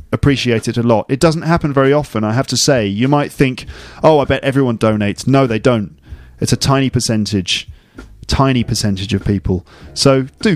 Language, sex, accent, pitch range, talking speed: English, male, British, 110-140 Hz, 195 wpm